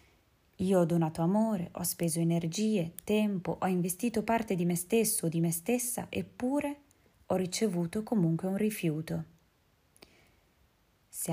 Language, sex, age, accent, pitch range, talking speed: Italian, female, 20-39, native, 170-195 Hz, 130 wpm